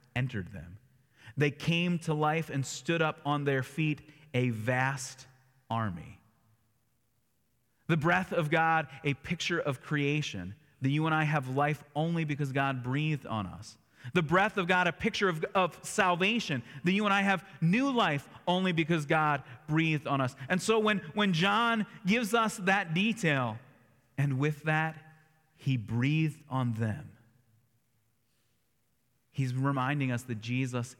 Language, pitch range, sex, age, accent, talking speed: English, 130-175 Hz, male, 30-49, American, 150 wpm